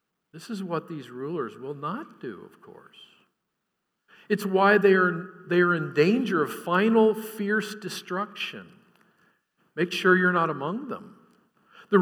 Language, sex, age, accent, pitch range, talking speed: English, male, 50-69, American, 145-205 Hz, 145 wpm